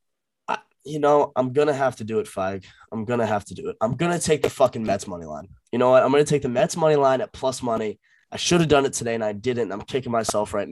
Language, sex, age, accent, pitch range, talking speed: English, male, 20-39, American, 100-120 Hz, 275 wpm